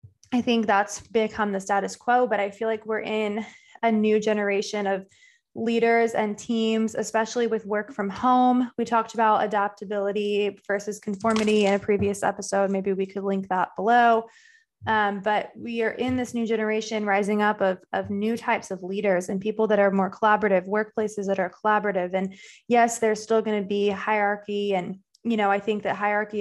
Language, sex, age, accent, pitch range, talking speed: English, female, 20-39, American, 200-225 Hz, 185 wpm